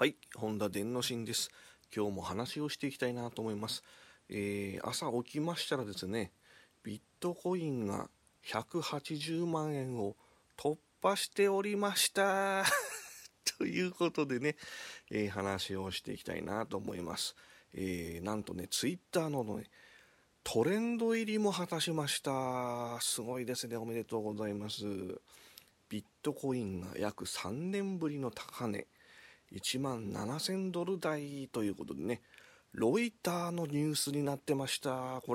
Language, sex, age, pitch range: Japanese, male, 30-49, 105-150 Hz